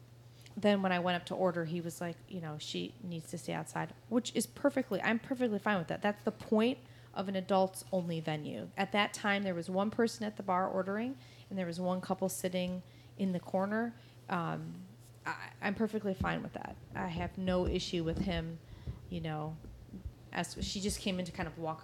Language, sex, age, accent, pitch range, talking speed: English, female, 30-49, American, 120-190 Hz, 210 wpm